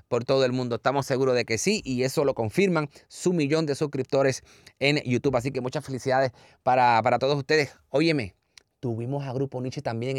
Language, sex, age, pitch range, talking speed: Spanish, male, 30-49, 110-140 Hz, 195 wpm